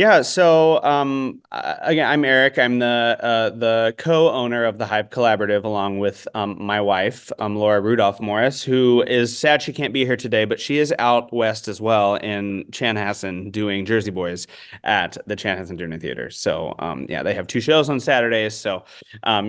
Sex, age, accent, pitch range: male, 30-49, American, 110-145 Hz